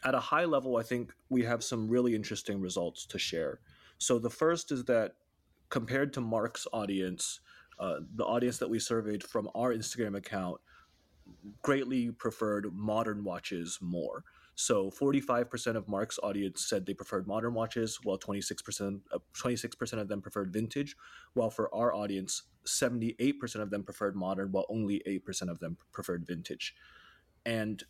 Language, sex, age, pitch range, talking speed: English, male, 30-49, 100-120 Hz, 155 wpm